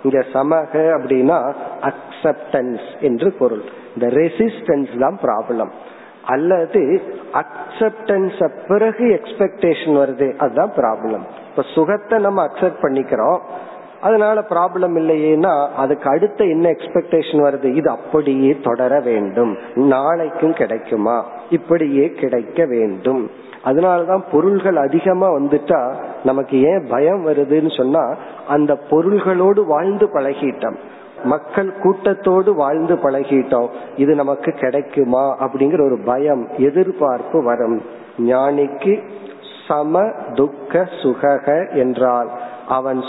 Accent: native